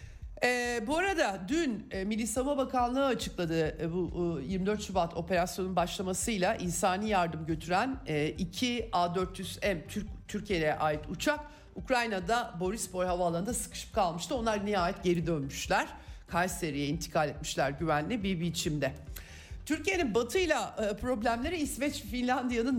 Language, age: Turkish, 50-69